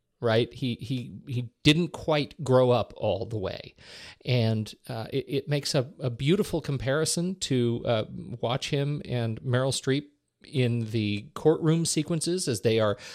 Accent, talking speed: American, 155 wpm